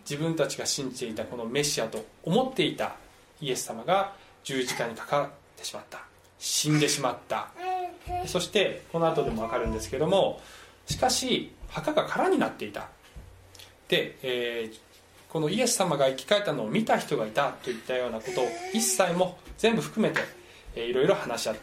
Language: Japanese